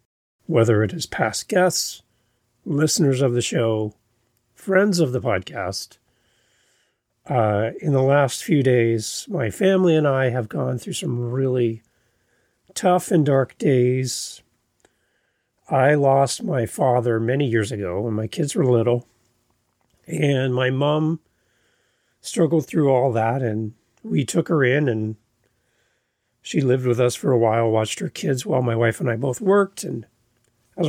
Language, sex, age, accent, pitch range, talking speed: English, male, 40-59, American, 115-150 Hz, 150 wpm